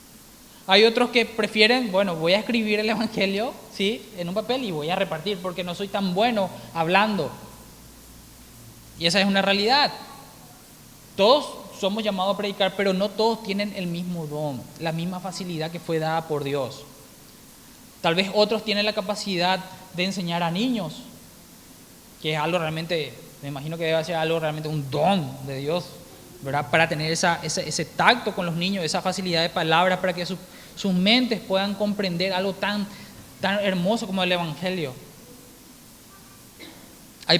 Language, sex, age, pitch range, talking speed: Spanish, male, 20-39, 165-200 Hz, 165 wpm